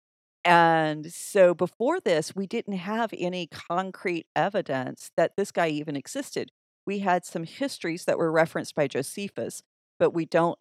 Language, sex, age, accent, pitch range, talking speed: English, female, 40-59, American, 155-190 Hz, 155 wpm